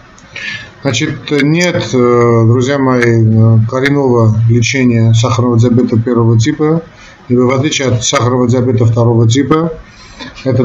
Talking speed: 105 wpm